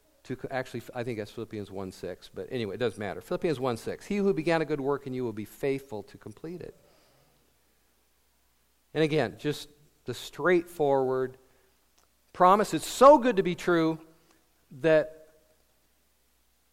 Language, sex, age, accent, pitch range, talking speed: English, male, 50-69, American, 110-165 Hz, 150 wpm